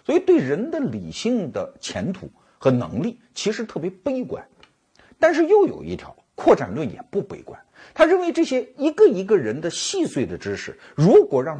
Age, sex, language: 50-69, male, Chinese